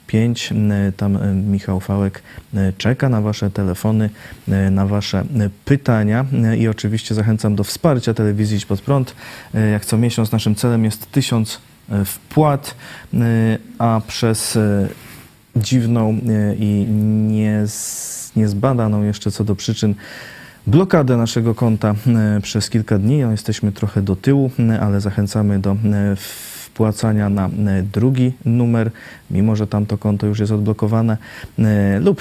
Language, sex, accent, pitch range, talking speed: Polish, male, native, 105-120 Hz, 115 wpm